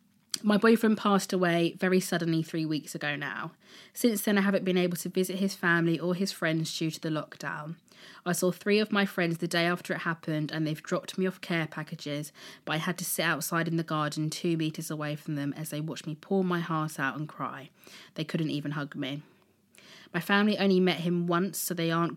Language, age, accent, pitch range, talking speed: English, 20-39, British, 155-185 Hz, 225 wpm